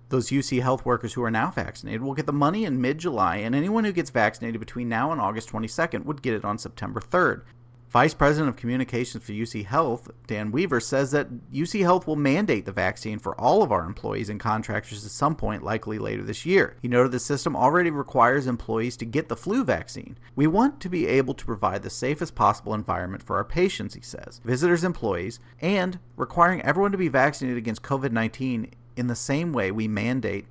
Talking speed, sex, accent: 210 wpm, male, American